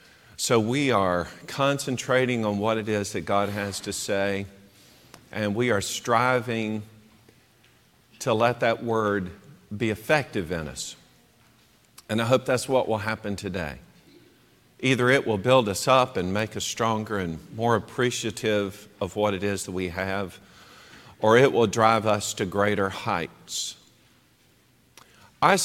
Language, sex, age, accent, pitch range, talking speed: English, male, 50-69, American, 100-125 Hz, 145 wpm